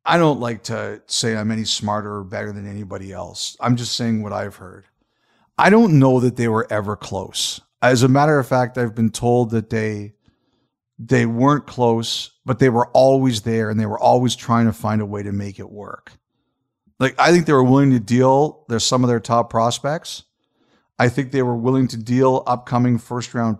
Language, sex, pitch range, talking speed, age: English, male, 115-135 Hz, 205 wpm, 50-69